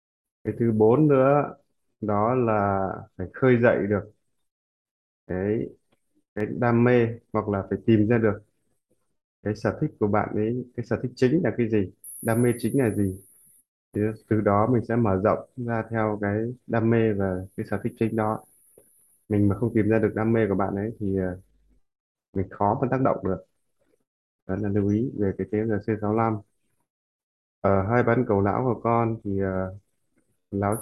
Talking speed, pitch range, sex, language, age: 175 wpm, 100-115 Hz, male, Vietnamese, 20-39